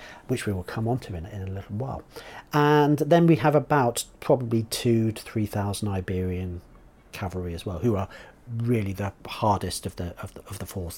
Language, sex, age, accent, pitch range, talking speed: English, male, 40-59, British, 100-140 Hz, 200 wpm